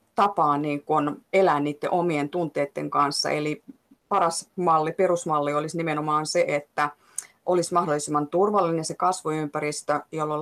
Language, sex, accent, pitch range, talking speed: Finnish, female, native, 150-175 Hz, 120 wpm